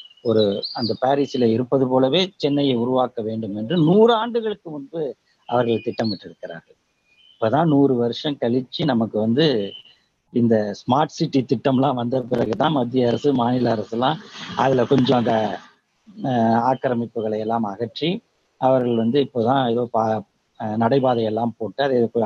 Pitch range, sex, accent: 115-145 Hz, male, native